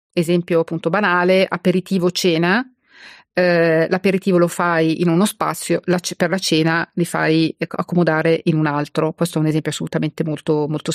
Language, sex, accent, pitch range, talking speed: Italian, female, native, 170-195 Hz, 155 wpm